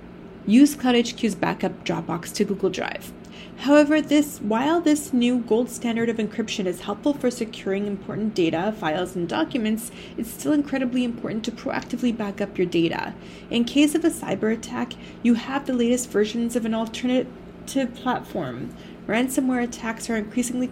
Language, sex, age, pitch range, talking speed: English, female, 30-49, 200-250 Hz, 155 wpm